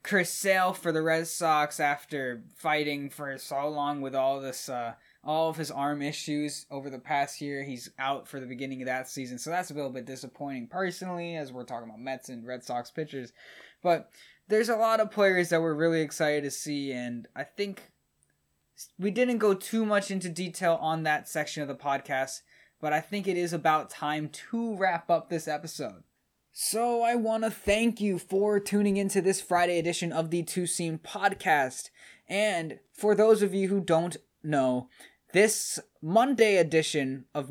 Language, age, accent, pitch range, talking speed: English, 10-29, American, 140-190 Hz, 190 wpm